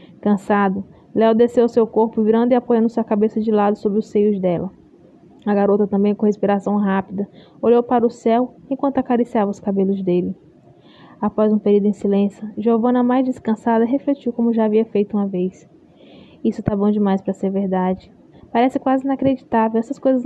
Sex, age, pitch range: female, 10-29, 205-255 Hz